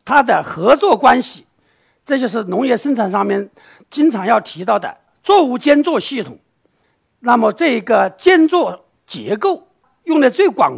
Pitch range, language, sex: 200-300 Hz, Chinese, male